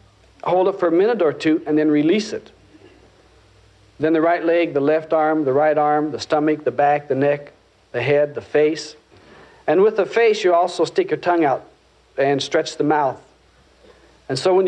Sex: male